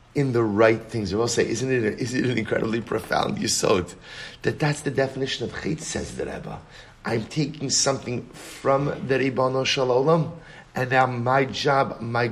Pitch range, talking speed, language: 110-140 Hz, 180 wpm, English